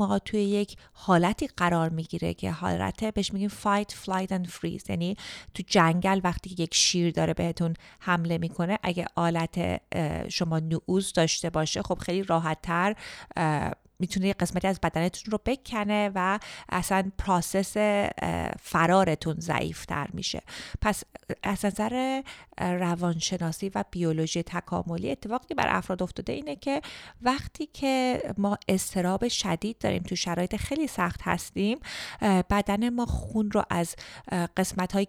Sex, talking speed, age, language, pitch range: female, 130 wpm, 30-49, Persian, 170-210 Hz